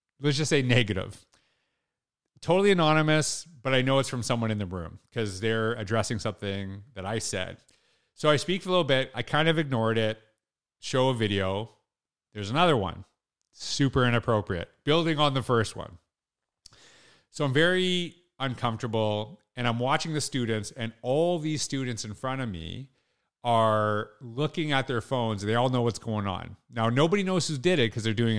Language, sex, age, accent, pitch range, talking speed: English, male, 40-59, American, 110-140 Hz, 180 wpm